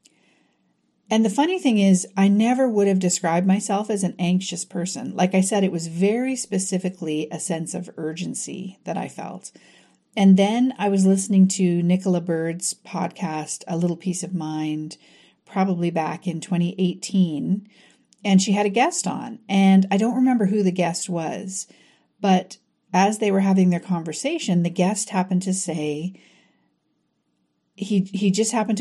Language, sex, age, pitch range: English, female, 40-59, 170-205 Hz